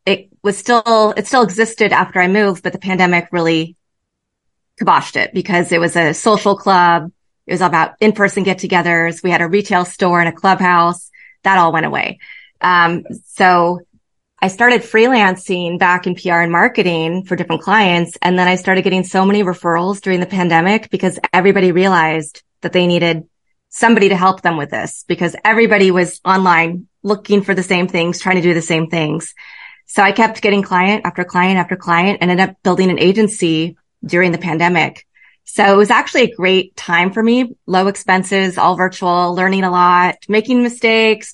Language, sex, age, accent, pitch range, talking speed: English, female, 30-49, American, 175-200 Hz, 185 wpm